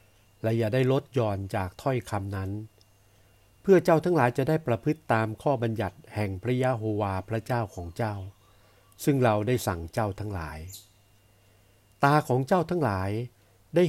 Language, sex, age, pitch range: Thai, male, 60-79, 100-130 Hz